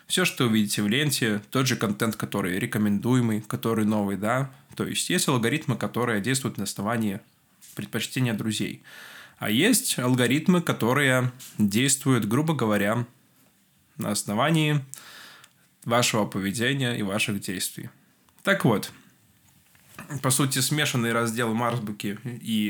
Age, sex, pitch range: 20-39, male, 110-135 Hz